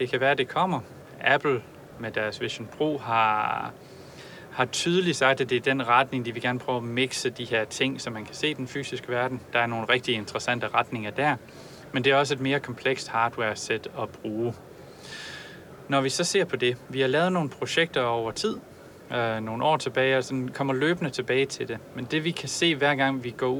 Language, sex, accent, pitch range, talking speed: Danish, male, native, 115-140 Hz, 220 wpm